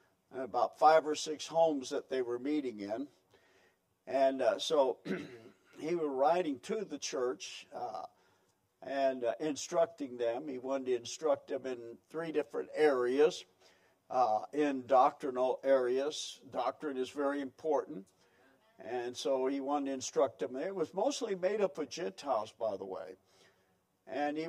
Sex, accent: male, American